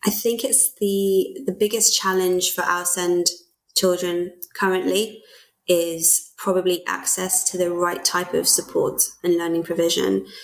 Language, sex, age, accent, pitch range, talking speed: English, female, 20-39, British, 170-185 Hz, 140 wpm